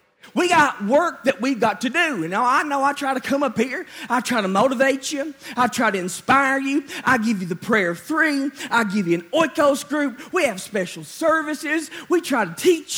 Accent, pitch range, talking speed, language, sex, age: American, 225-295 Hz, 225 wpm, English, male, 40-59